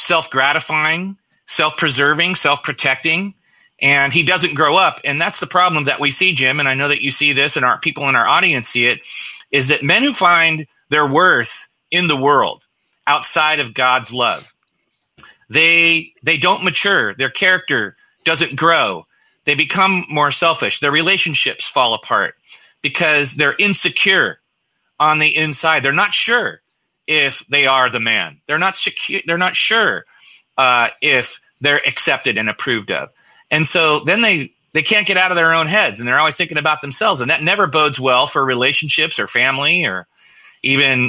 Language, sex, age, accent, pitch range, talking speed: English, male, 30-49, American, 140-175 Hz, 170 wpm